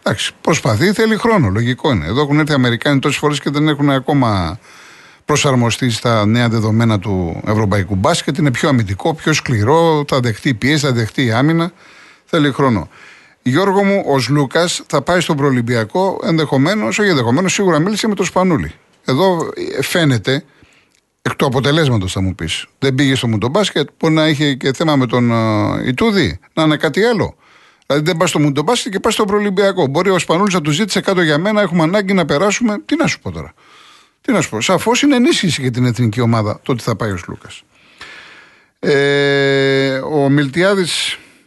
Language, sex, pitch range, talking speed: Greek, male, 125-180 Hz, 175 wpm